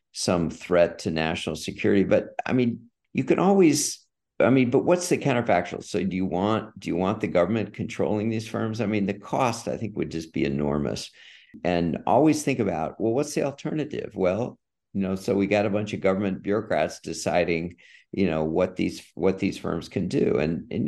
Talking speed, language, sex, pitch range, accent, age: 200 wpm, English, male, 85-110 Hz, American, 50-69